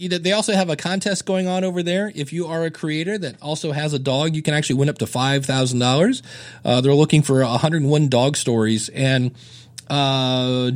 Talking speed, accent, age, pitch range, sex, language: 195 wpm, American, 40-59, 120-155 Hz, male, English